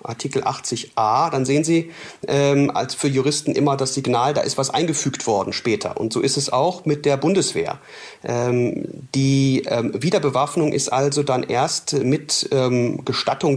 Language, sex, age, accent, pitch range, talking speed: German, male, 40-59, German, 130-150 Hz, 165 wpm